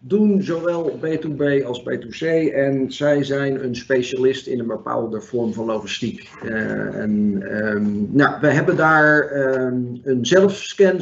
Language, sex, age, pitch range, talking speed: Dutch, male, 50-69, 135-160 Hz, 140 wpm